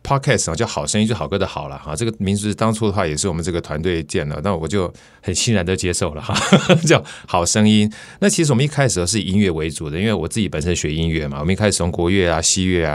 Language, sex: Chinese, male